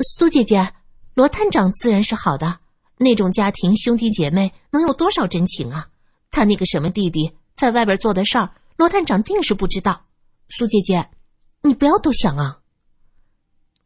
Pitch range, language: 165-240 Hz, Chinese